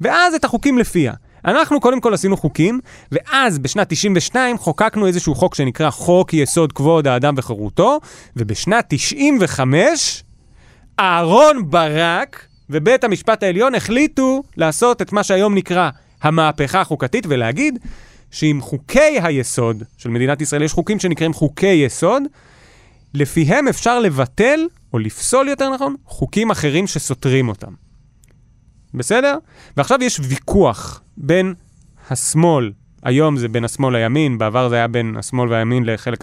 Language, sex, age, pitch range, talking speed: Hebrew, male, 30-49, 130-205 Hz, 130 wpm